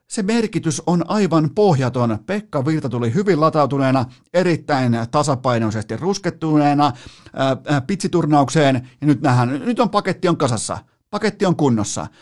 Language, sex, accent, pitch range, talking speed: Finnish, male, native, 120-155 Hz, 125 wpm